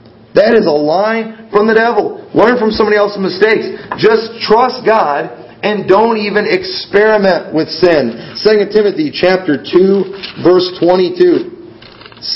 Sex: male